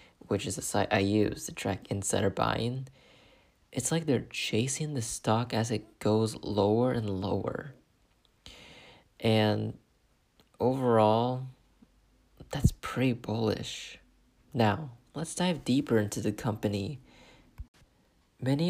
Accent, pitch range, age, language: American, 105-125 Hz, 30-49, English